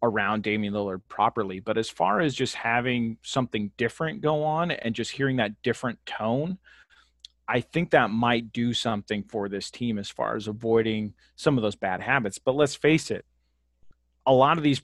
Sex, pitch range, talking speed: male, 110-135 Hz, 185 wpm